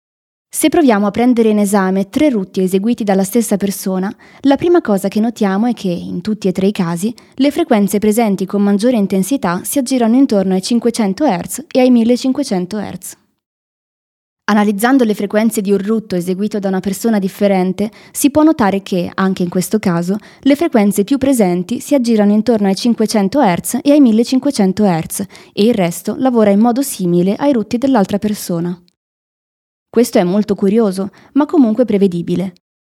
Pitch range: 190-235 Hz